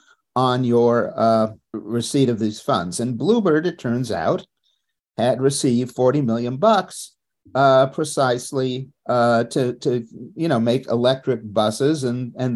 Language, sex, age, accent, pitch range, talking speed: English, male, 50-69, American, 115-140 Hz, 140 wpm